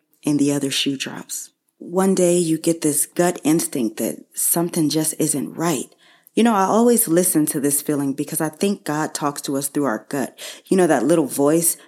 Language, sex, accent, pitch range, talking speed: English, female, American, 145-195 Hz, 200 wpm